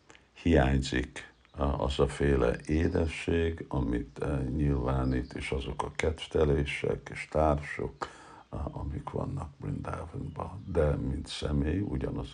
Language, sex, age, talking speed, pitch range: Hungarian, male, 60-79, 95 wpm, 70-80 Hz